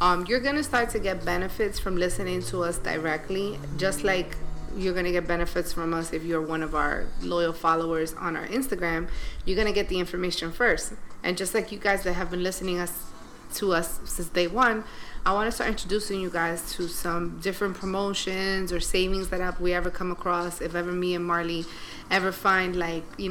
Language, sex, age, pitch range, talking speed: English, female, 30-49, 175-200 Hz, 210 wpm